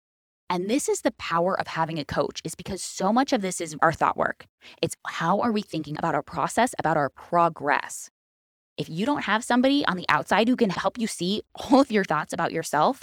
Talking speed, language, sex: 225 wpm, English, female